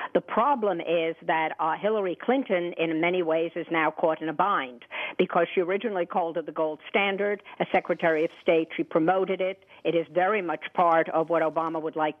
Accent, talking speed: American, 200 wpm